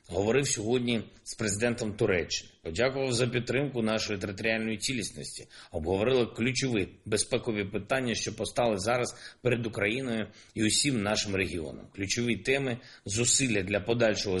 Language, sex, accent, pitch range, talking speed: Ukrainian, male, native, 100-125 Hz, 125 wpm